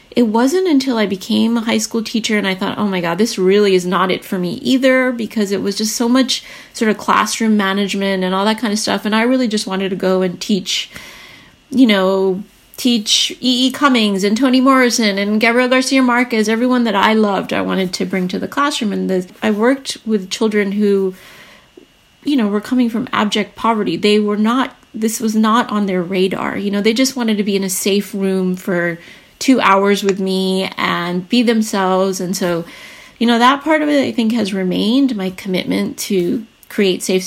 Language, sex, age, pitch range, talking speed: English, female, 30-49, 190-235 Hz, 210 wpm